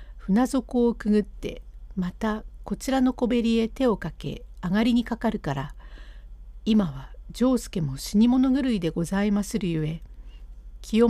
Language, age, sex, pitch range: Japanese, 60-79, female, 170-235 Hz